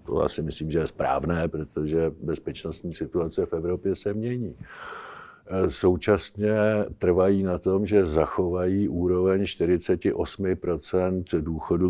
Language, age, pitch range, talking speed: Czech, 50-69, 90-115 Hz, 110 wpm